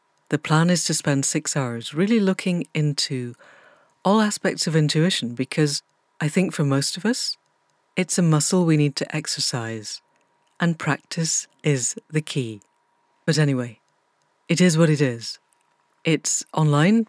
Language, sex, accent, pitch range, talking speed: English, female, British, 135-165 Hz, 150 wpm